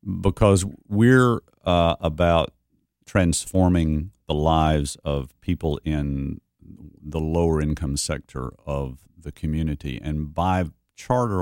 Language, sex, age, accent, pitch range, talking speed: English, male, 50-69, American, 75-90 Hz, 105 wpm